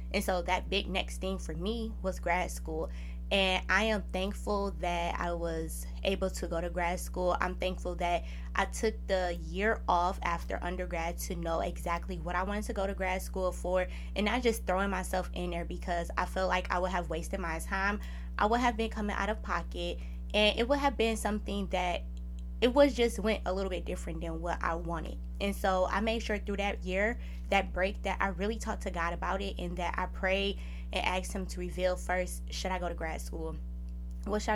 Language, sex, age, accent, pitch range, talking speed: English, female, 20-39, American, 165-195 Hz, 220 wpm